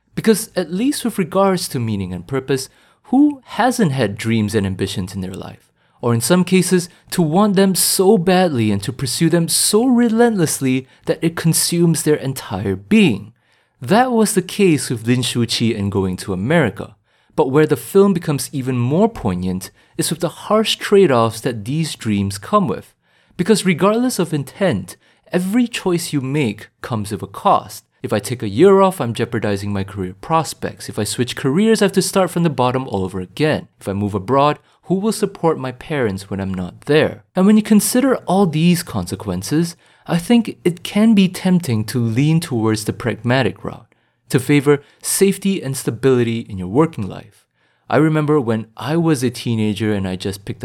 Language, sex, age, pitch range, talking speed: English, male, 30-49, 110-180 Hz, 185 wpm